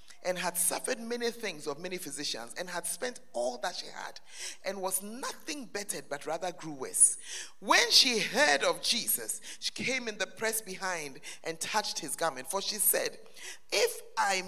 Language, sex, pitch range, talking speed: English, male, 175-240 Hz, 180 wpm